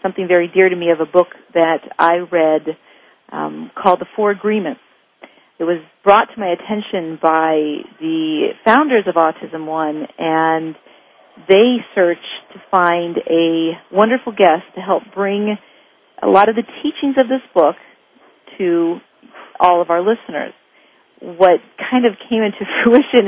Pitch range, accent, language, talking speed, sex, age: 165-210 Hz, American, English, 150 wpm, female, 40-59